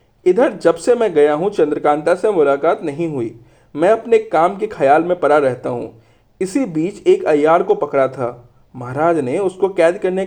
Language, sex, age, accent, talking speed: Hindi, male, 40-59, native, 185 wpm